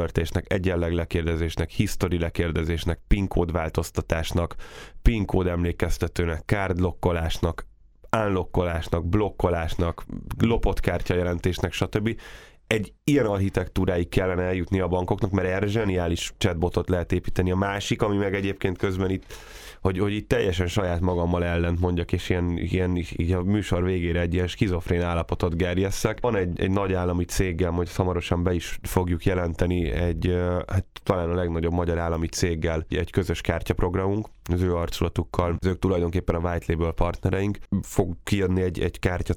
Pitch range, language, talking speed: 85-100 Hz, Hungarian, 140 wpm